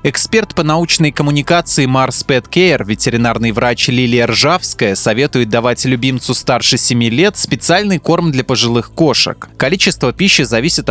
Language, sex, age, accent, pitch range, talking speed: Russian, male, 20-39, native, 120-165 Hz, 140 wpm